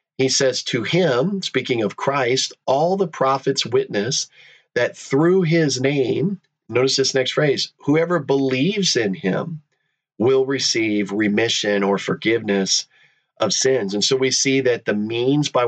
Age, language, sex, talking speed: 40-59, English, male, 145 wpm